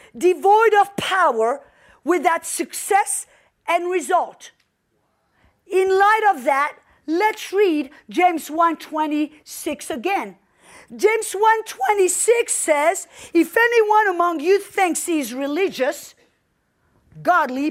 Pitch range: 320-400 Hz